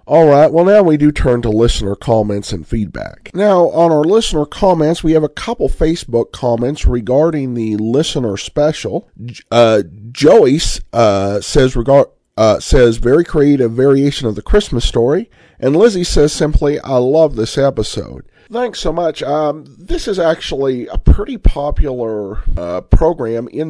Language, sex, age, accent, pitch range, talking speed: English, male, 50-69, American, 110-150 Hz, 155 wpm